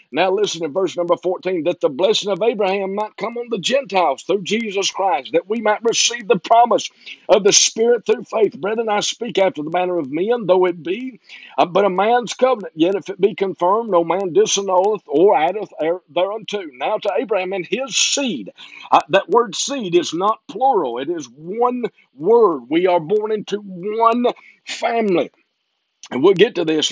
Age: 50-69